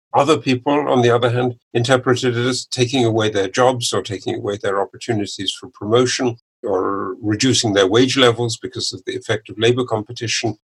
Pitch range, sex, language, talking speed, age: 100-125 Hz, male, English, 180 wpm, 50-69